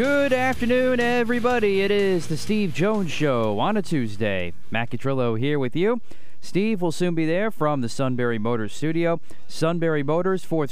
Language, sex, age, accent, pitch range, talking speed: English, male, 30-49, American, 115-160 Hz, 170 wpm